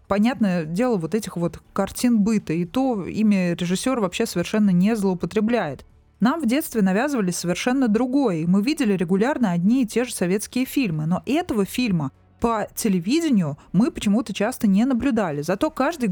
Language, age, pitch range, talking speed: Russian, 20-39, 180-235 Hz, 160 wpm